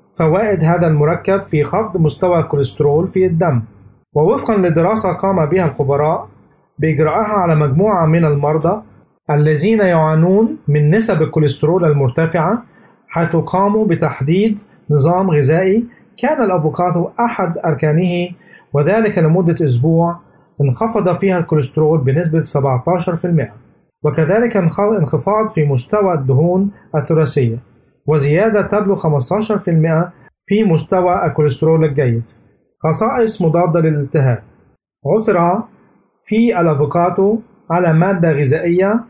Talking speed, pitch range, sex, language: 100 wpm, 150-195 Hz, male, Arabic